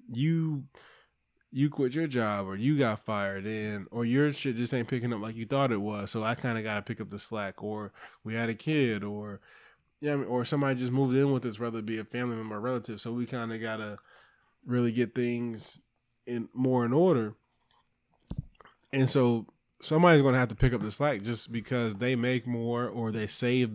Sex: male